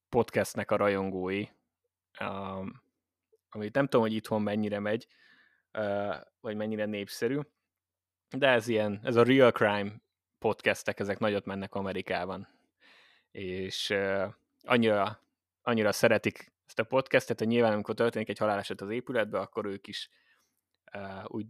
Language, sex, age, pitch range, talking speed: Hungarian, male, 20-39, 95-115 Hz, 125 wpm